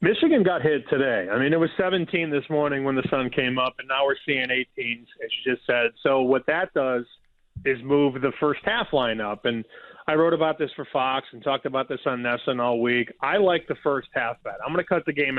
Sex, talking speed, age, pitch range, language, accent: male, 245 wpm, 30-49, 130-175 Hz, English, American